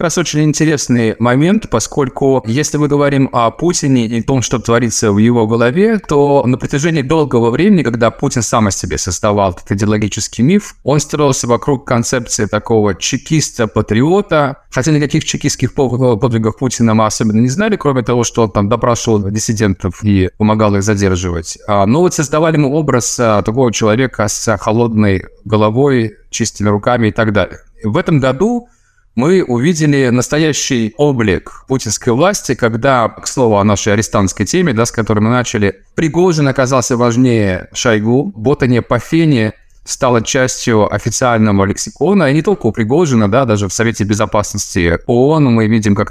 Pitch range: 105-145 Hz